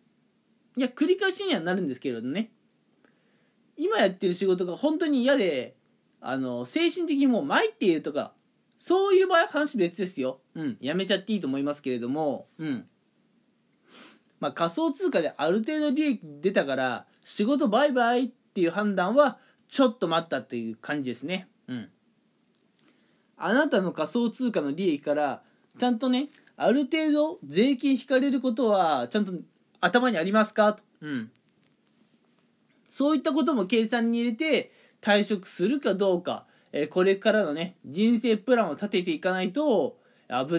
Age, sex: 20-39, male